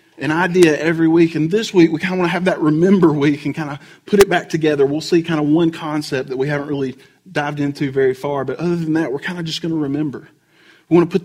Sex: male